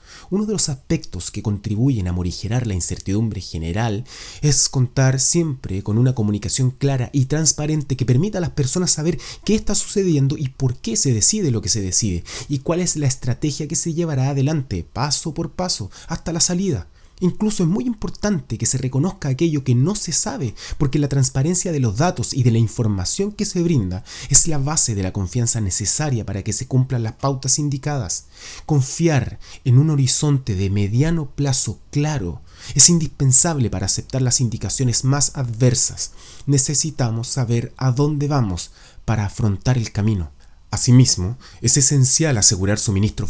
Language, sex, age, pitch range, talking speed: Spanish, male, 30-49, 105-145 Hz, 170 wpm